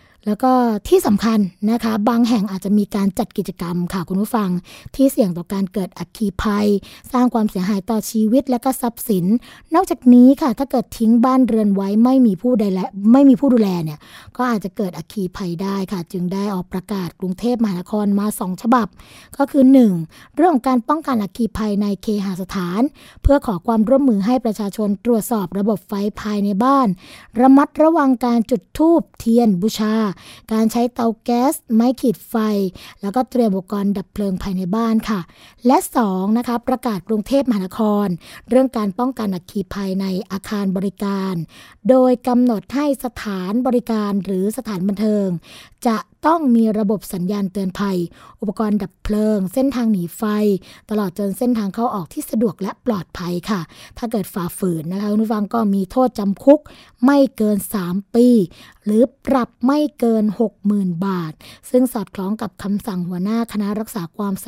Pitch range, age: 195-245 Hz, 20-39